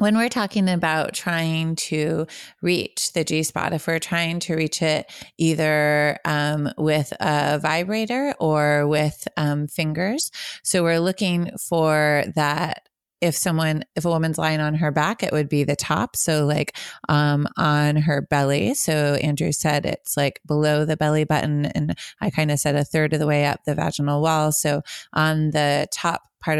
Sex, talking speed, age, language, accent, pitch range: female, 175 wpm, 30-49, English, American, 150-170 Hz